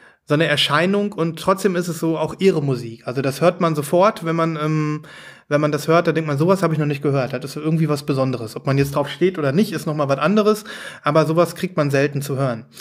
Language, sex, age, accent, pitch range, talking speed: German, male, 30-49, German, 145-175 Hz, 260 wpm